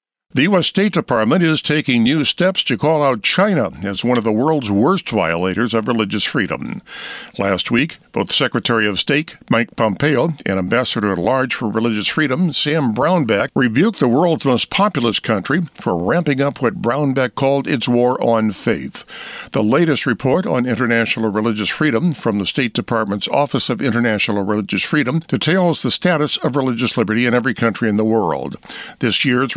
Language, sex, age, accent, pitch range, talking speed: English, male, 60-79, American, 115-150 Hz, 170 wpm